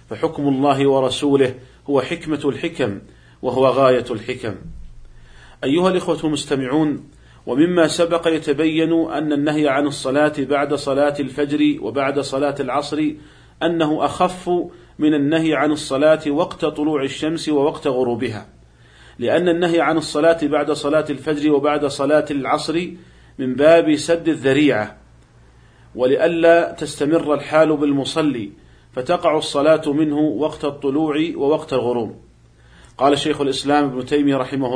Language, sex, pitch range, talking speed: Arabic, male, 135-155 Hz, 115 wpm